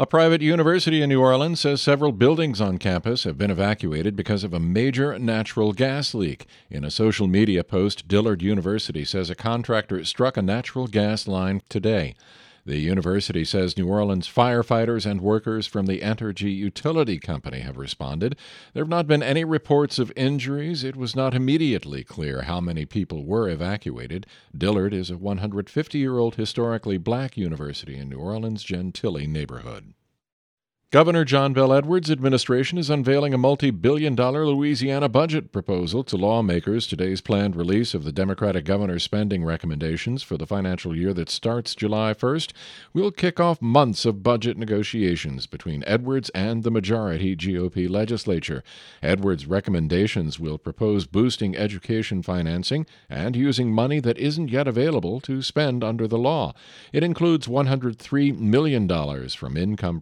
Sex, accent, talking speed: male, American, 155 wpm